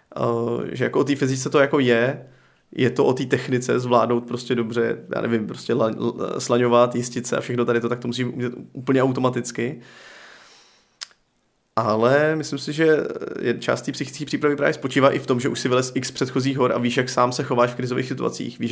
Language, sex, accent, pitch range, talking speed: Czech, male, native, 120-135 Hz, 200 wpm